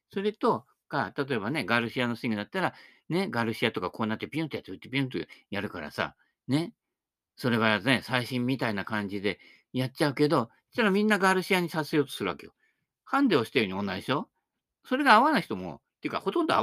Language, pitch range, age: Japanese, 115-195 Hz, 50-69